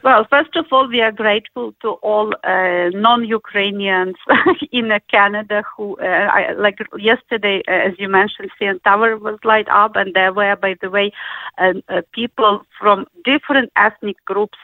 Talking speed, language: 170 wpm, English